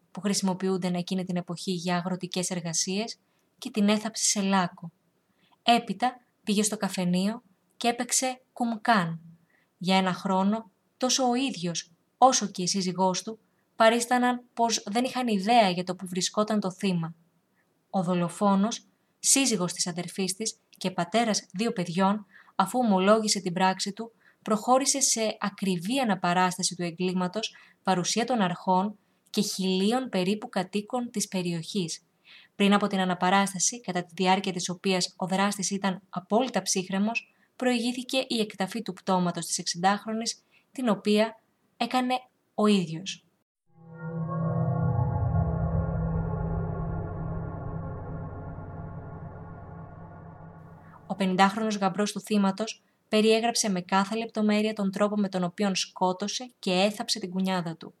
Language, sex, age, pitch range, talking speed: Greek, female, 20-39, 180-220 Hz, 125 wpm